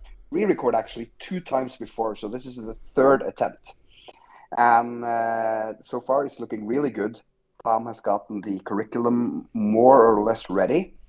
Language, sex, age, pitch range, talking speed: English, male, 30-49, 105-125 Hz, 150 wpm